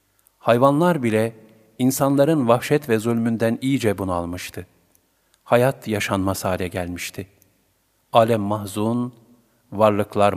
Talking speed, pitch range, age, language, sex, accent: 85 wpm, 100-130 Hz, 50-69, Turkish, male, native